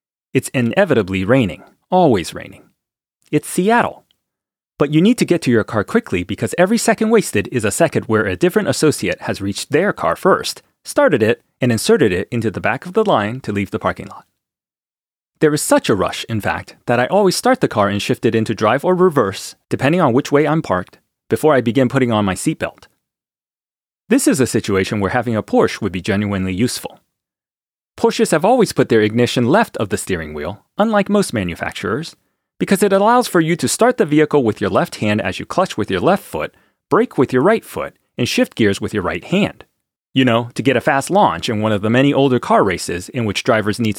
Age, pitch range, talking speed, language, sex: 30-49, 105-160 Hz, 215 wpm, English, male